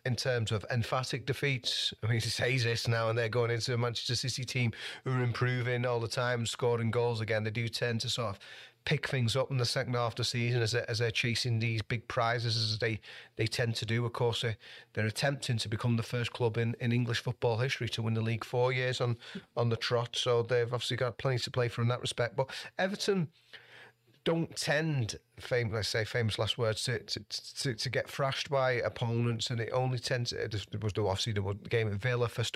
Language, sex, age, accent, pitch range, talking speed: English, male, 30-49, British, 115-125 Hz, 210 wpm